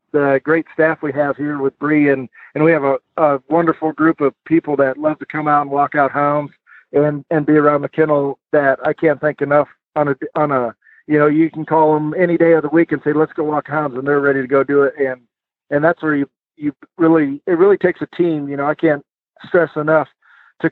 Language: English